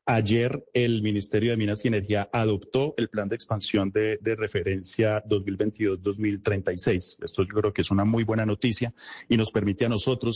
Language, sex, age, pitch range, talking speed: Spanish, male, 30-49, 100-125 Hz, 175 wpm